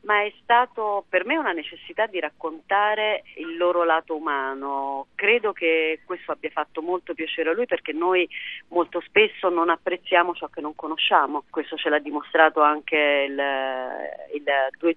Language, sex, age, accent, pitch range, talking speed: Italian, female, 40-59, native, 150-175 Hz, 160 wpm